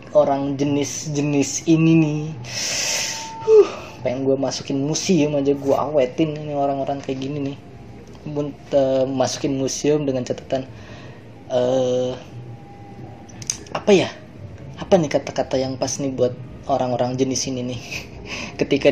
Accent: native